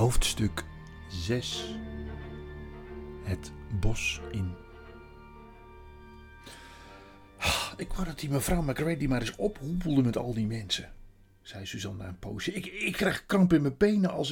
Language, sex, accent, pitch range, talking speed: Dutch, male, Dutch, 90-150 Hz, 125 wpm